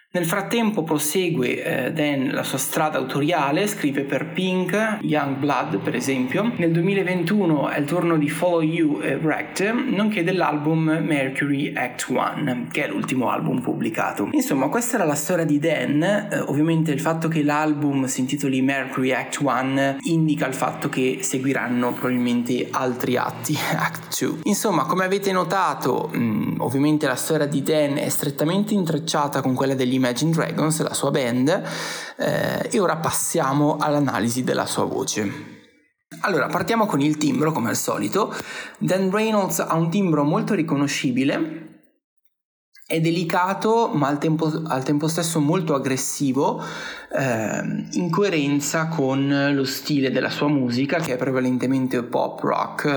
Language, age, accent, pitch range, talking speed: Italian, 20-39, native, 135-175 Hz, 145 wpm